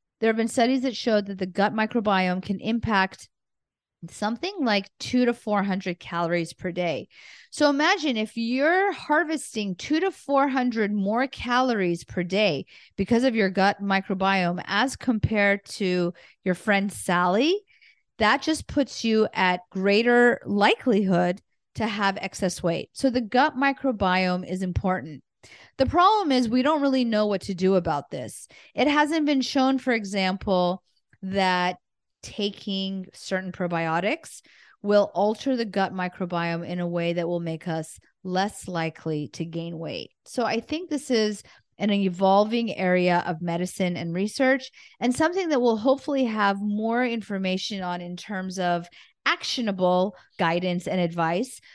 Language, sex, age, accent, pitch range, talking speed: English, female, 40-59, American, 180-250 Hz, 145 wpm